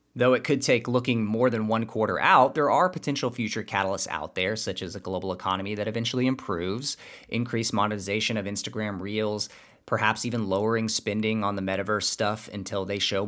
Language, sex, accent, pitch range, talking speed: English, male, American, 95-120 Hz, 185 wpm